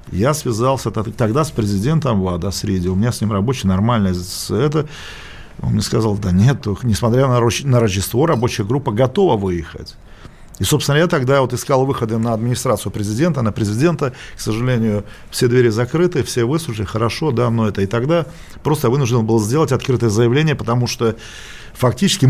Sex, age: male, 40-59